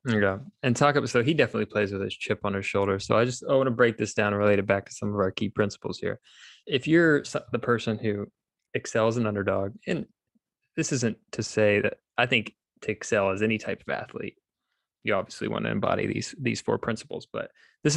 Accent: American